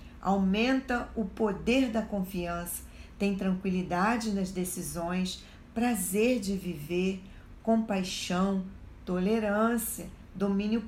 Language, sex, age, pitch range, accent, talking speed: Portuguese, female, 40-59, 185-230 Hz, Brazilian, 85 wpm